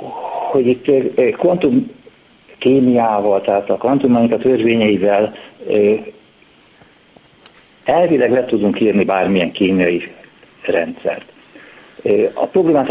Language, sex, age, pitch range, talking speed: Hungarian, male, 50-69, 105-130 Hz, 90 wpm